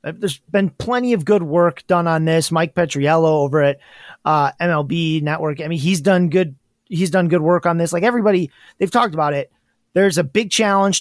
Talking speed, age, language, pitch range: 200 wpm, 30-49, English, 160-200 Hz